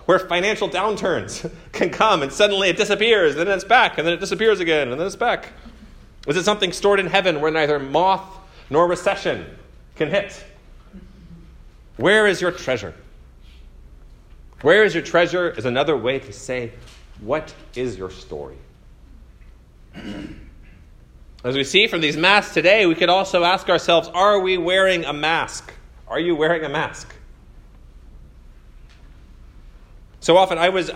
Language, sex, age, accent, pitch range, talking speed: English, male, 30-49, American, 120-185 Hz, 150 wpm